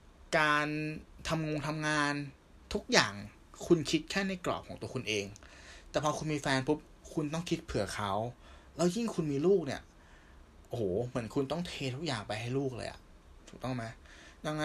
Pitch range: 105-155 Hz